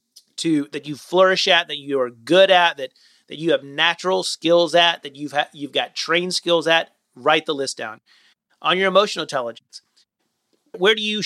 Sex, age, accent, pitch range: male, 30-49, American, 145-185 Hz